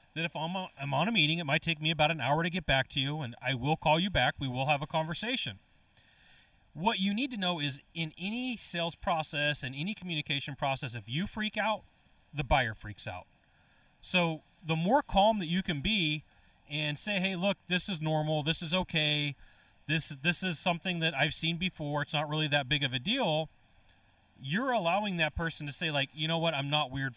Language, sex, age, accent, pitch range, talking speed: English, male, 30-49, American, 140-180 Hz, 225 wpm